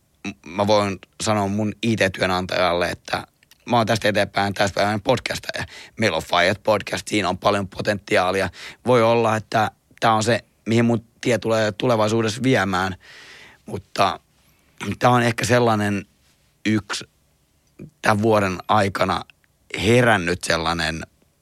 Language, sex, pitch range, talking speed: Finnish, male, 95-115 Hz, 125 wpm